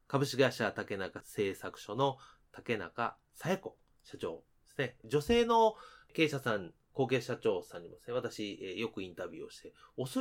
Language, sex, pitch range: Japanese, male, 105-170 Hz